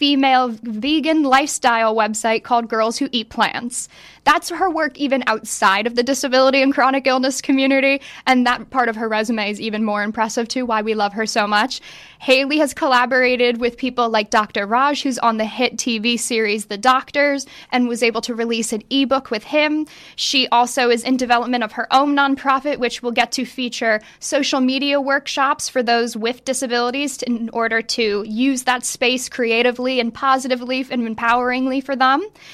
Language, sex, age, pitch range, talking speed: English, female, 10-29, 230-270 Hz, 180 wpm